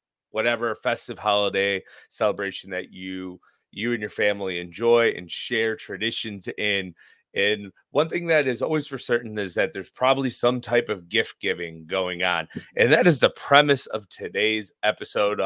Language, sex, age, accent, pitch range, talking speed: English, male, 30-49, American, 105-130 Hz, 165 wpm